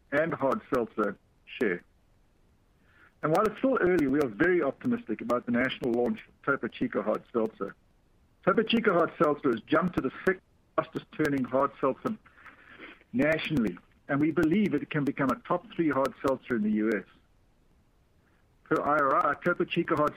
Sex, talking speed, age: male, 165 wpm, 60-79